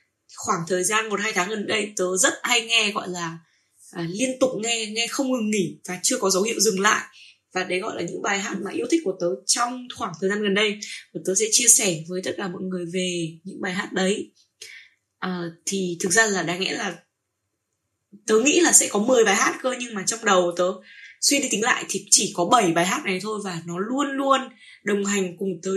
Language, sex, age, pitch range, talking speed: Vietnamese, female, 10-29, 185-240 Hz, 240 wpm